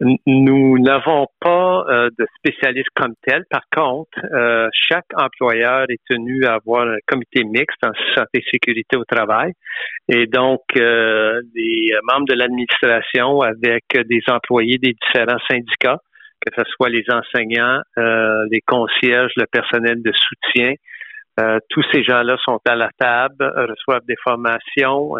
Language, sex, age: French, male, 50-69